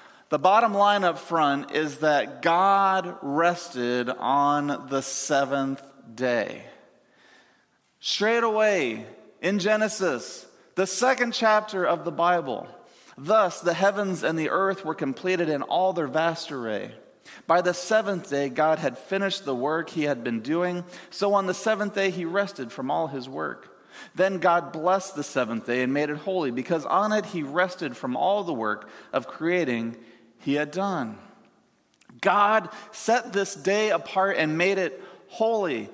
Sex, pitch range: male, 150-200 Hz